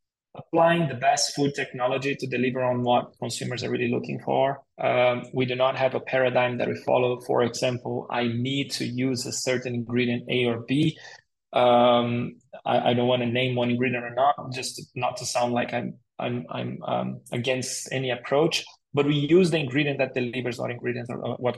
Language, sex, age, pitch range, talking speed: English, male, 20-39, 120-140 Hz, 195 wpm